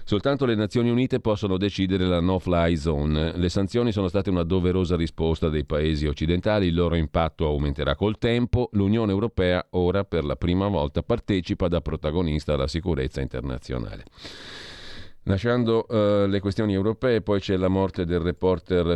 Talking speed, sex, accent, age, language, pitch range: 150 wpm, male, native, 40-59, Italian, 75-95 Hz